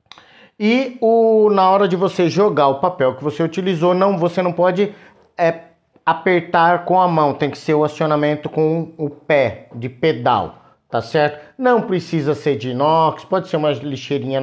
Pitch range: 145-175 Hz